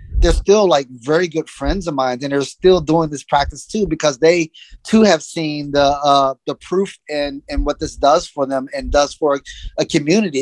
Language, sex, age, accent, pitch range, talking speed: English, male, 30-49, American, 140-170 Hz, 200 wpm